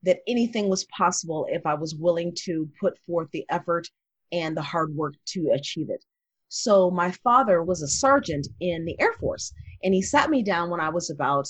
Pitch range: 160-215 Hz